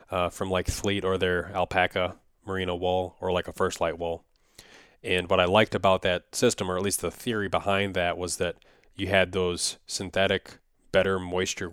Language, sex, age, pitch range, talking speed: English, male, 20-39, 90-100 Hz, 190 wpm